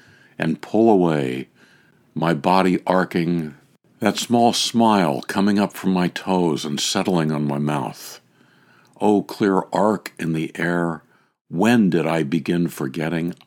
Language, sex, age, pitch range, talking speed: English, male, 60-79, 85-105 Hz, 135 wpm